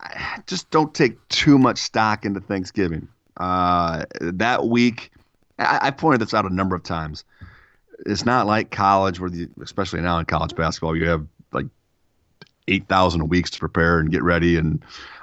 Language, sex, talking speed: English, male, 165 wpm